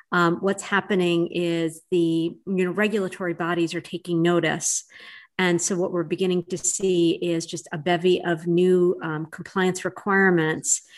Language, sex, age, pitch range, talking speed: English, female, 50-69, 170-200 Hz, 155 wpm